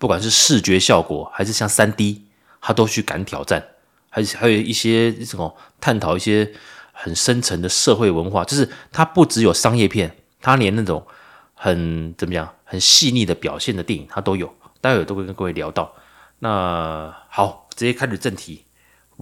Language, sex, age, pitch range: Chinese, male, 30-49, 95-125 Hz